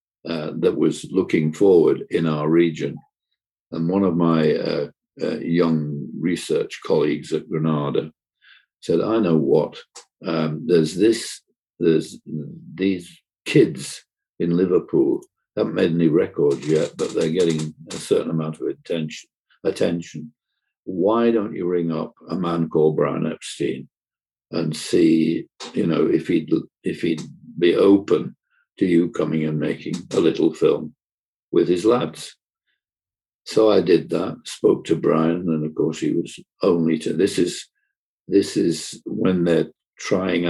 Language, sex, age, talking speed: English, male, 60-79, 145 wpm